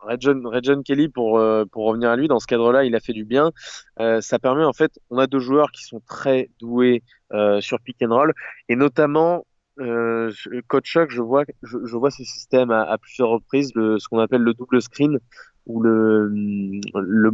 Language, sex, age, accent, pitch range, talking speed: French, male, 20-39, French, 115-135 Hz, 210 wpm